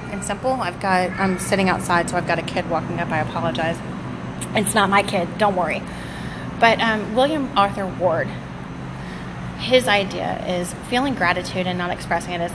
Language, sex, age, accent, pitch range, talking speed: English, female, 30-49, American, 170-205 Hz, 170 wpm